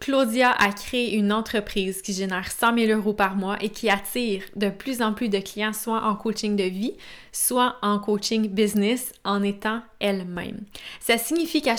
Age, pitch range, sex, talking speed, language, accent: 20-39, 200-230 Hz, female, 185 wpm, French, Canadian